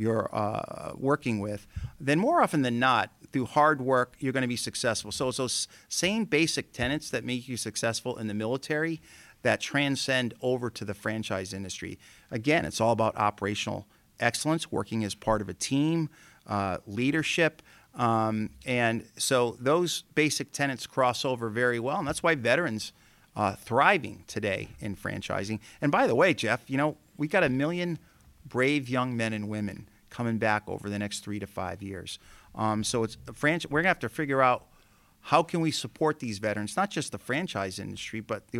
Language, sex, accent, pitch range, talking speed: English, male, American, 105-130 Hz, 180 wpm